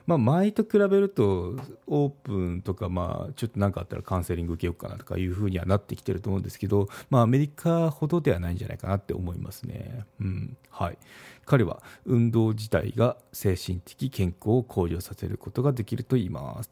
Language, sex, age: Japanese, male, 40-59